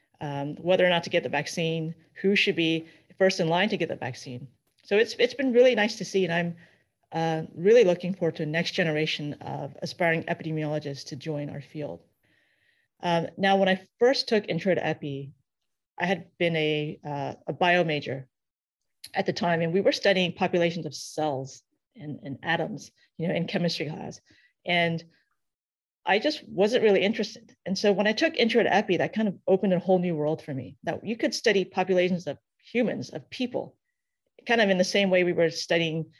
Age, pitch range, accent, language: 30-49, 155-195 Hz, American, English